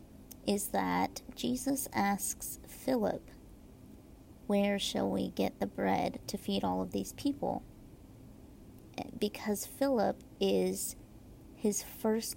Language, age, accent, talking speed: English, 30-49, American, 105 wpm